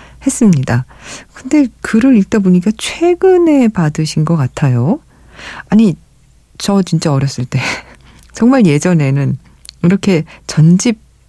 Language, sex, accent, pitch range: Korean, female, native, 145-205 Hz